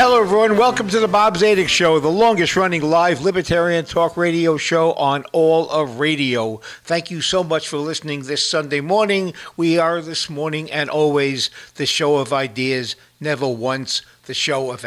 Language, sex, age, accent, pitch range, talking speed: English, male, 60-79, American, 140-185 Hz, 175 wpm